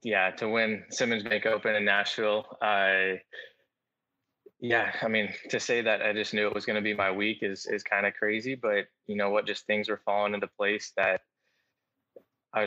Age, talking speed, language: 20-39, 195 wpm, English